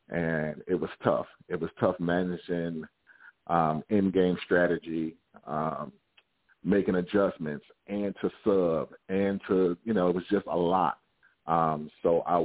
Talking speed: 140 wpm